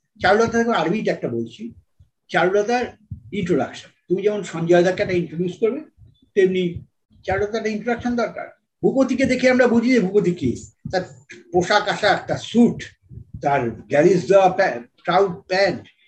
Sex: male